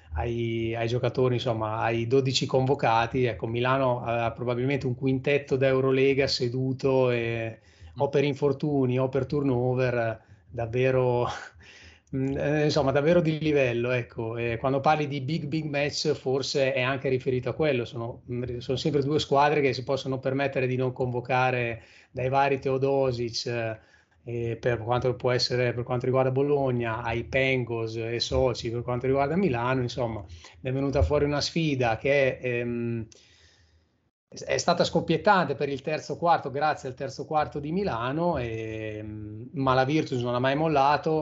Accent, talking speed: native, 150 wpm